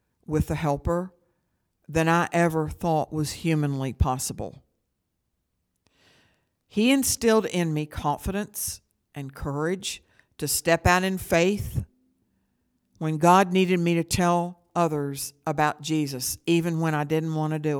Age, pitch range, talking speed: 60-79, 145-180 Hz, 130 wpm